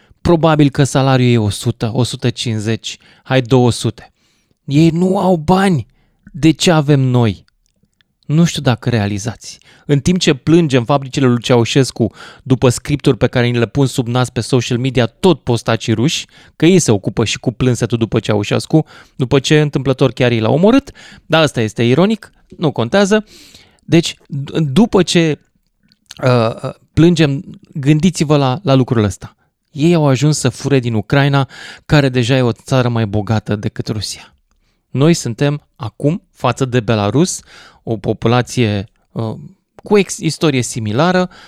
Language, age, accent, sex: Romanian, 20-39, native, male